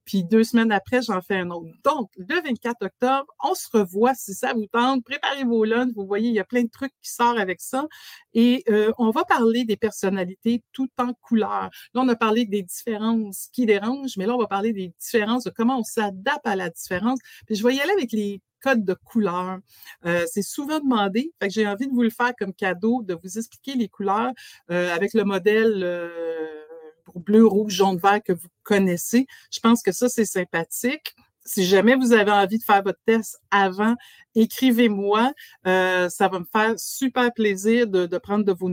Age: 60-79